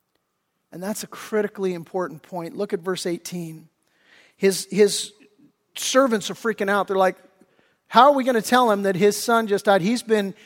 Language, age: English, 40-59